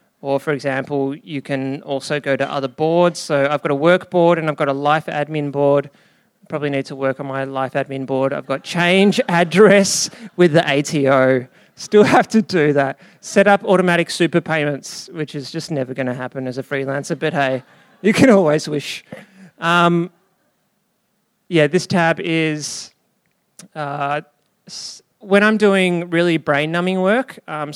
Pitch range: 140-180 Hz